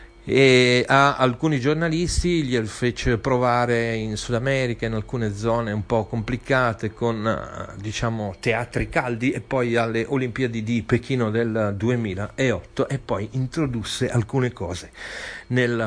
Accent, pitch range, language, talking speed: native, 110-130 Hz, Italian, 130 wpm